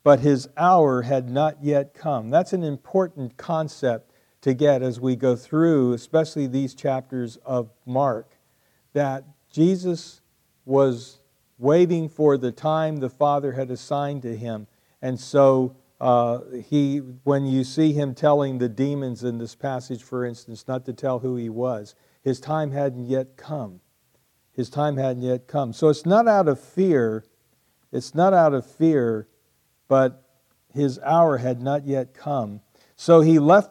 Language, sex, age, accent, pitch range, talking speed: English, male, 50-69, American, 125-150 Hz, 155 wpm